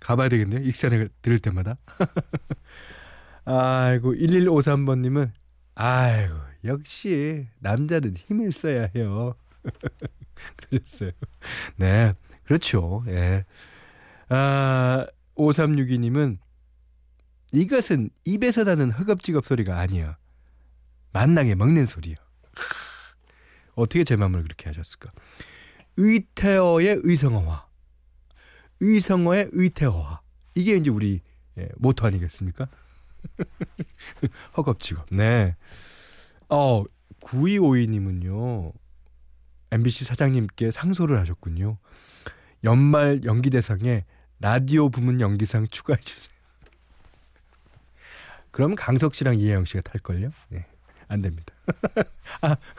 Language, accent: Korean, native